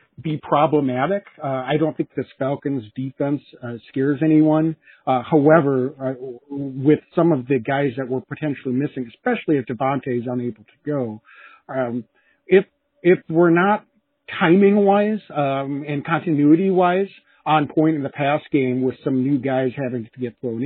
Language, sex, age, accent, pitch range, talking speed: English, male, 50-69, American, 125-155 Hz, 155 wpm